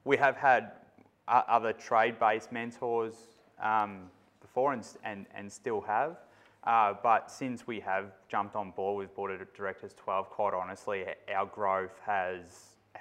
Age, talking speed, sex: 20-39, 145 wpm, male